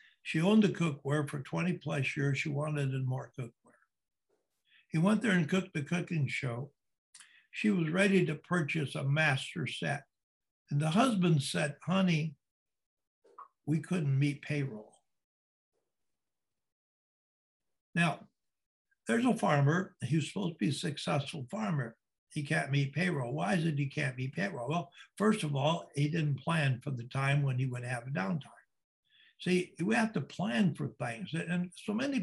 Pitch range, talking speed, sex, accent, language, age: 140-175 Hz, 160 wpm, male, American, English, 60-79